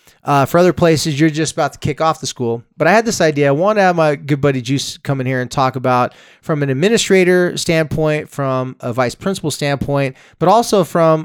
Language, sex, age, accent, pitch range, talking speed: English, male, 20-39, American, 135-165 Hz, 230 wpm